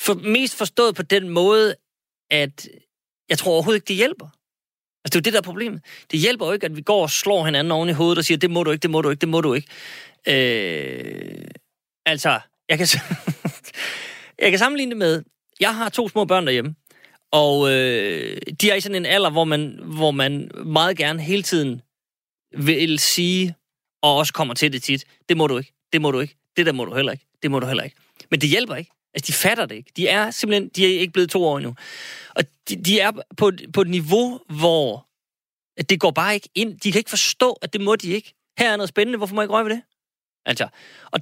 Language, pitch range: Danish, 150-205 Hz